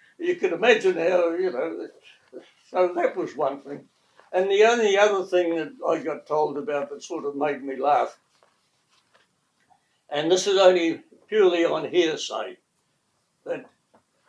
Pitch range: 145-190 Hz